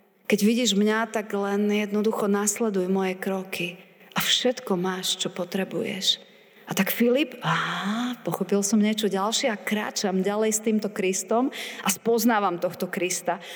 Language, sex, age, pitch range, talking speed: Slovak, female, 30-49, 190-245 Hz, 145 wpm